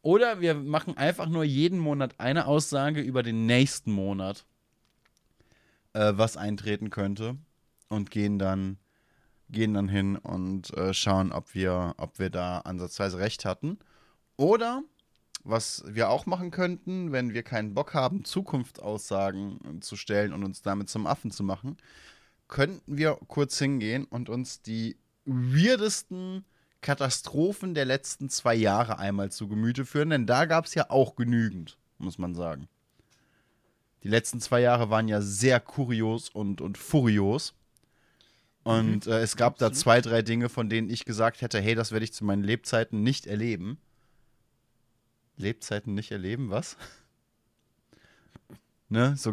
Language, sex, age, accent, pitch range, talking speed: German, male, 10-29, German, 105-140 Hz, 145 wpm